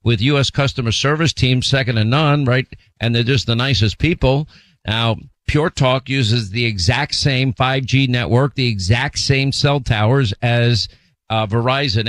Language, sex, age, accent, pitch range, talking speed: English, male, 50-69, American, 120-145 Hz, 160 wpm